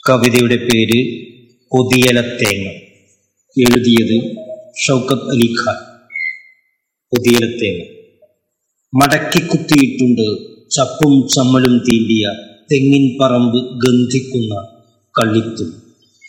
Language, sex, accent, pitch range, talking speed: Malayalam, male, native, 115-150 Hz, 55 wpm